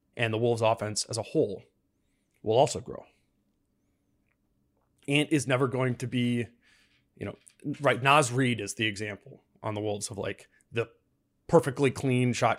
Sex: male